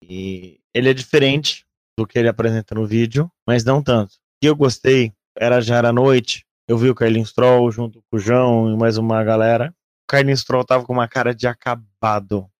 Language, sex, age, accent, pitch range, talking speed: Portuguese, male, 20-39, Brazilian, 110-130 Hz, 205 wpm